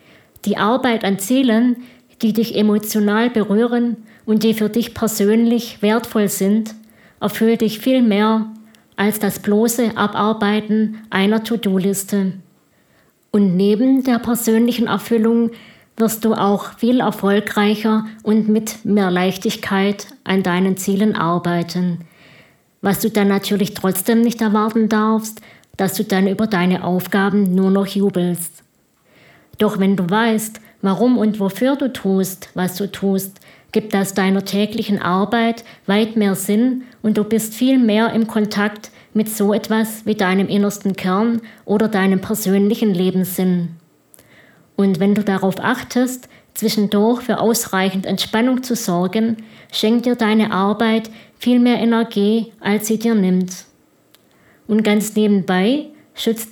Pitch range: 195-225 Hz